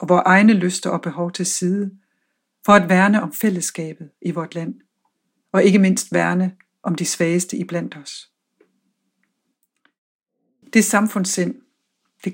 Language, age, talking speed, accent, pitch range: Danish, 60-79, 135 wpm, native, 180-220 Hz